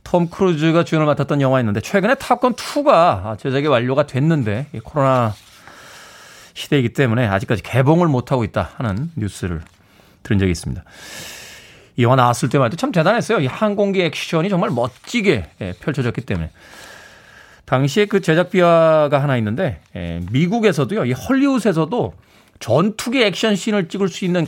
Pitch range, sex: 115-180 Hz, male